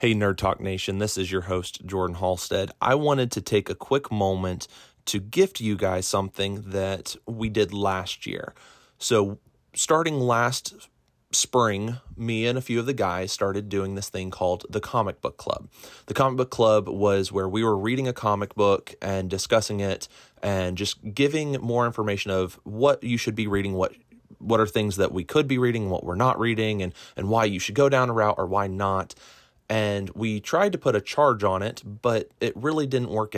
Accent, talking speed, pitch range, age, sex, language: American, 200 wpm, 95-115 Hz, 30-49, male, English